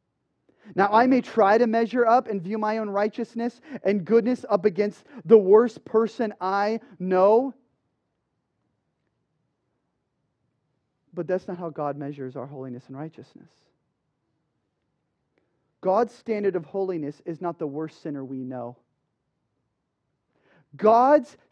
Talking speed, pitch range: 120 wpm, 160-220 Hz